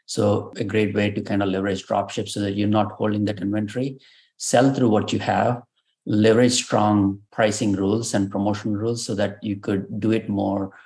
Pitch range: 100-110 Hz